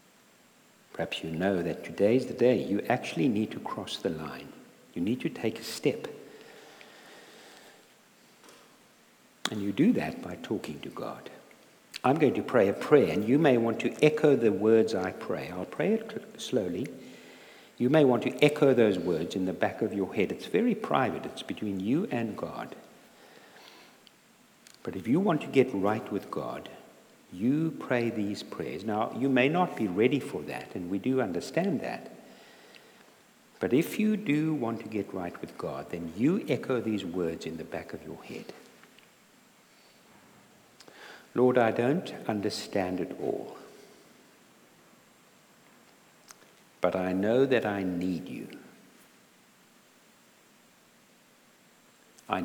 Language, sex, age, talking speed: English, male, 60-79, 150 wpm